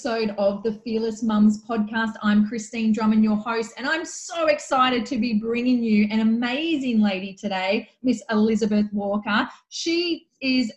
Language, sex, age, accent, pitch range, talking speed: English, female, 20-39, Australian, 215-270 Hz, 150 wpm